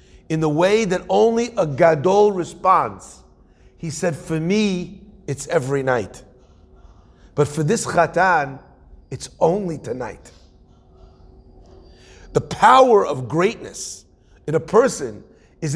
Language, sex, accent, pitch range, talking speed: English, male, American, 155-205 Hz, 115 wpm